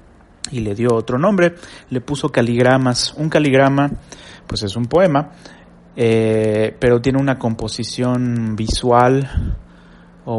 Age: 30-49